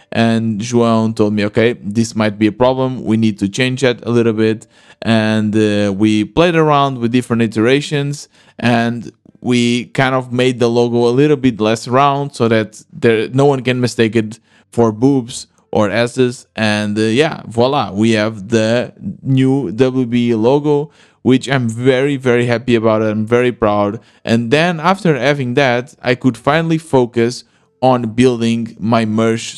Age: 20-39